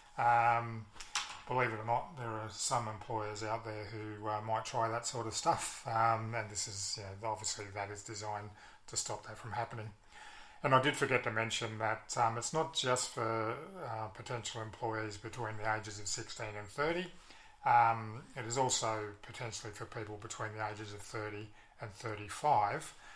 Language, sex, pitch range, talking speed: English, male, 105-115 Hz, 180 wpm